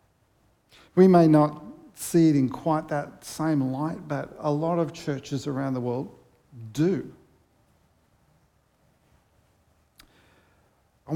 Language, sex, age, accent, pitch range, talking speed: English, male, 50-69, Australian, 130-170 Hz, 110 wpm